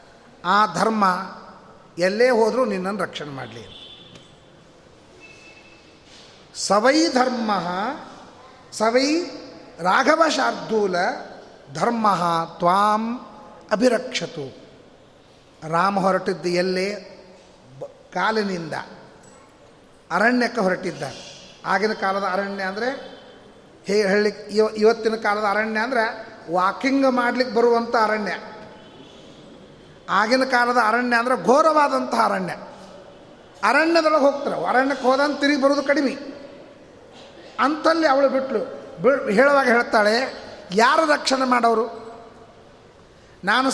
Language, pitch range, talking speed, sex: Kannada, 195-265 Hz, 80 wpm, male